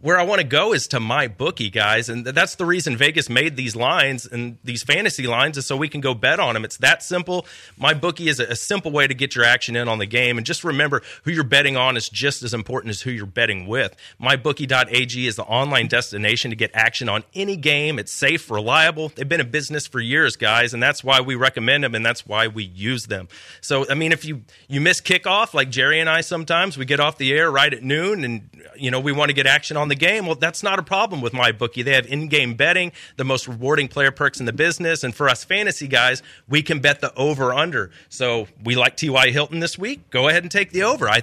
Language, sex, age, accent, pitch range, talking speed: English, male, 30-49, American, 125-165 Hz, 250 wpm